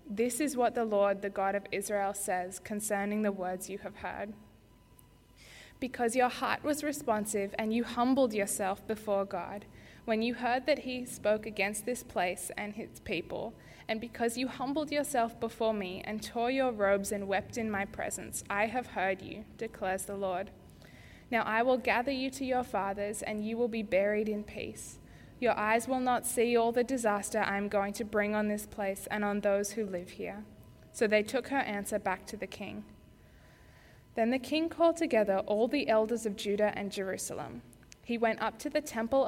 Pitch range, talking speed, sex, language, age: 200-240 Hz, 195 wpm, female, English, 10-29